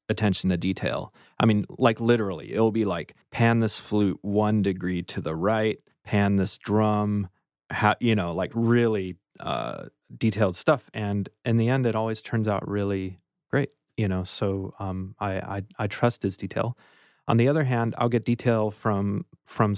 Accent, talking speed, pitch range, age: American, 175 wpm, 95-115 Hz, 30-49